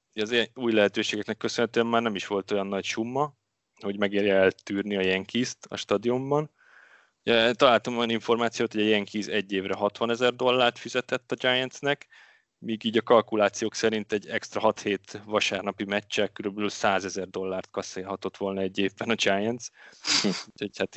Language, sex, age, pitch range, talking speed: Hungarian, male, 20-39, 100-120 Hz, 150 wpm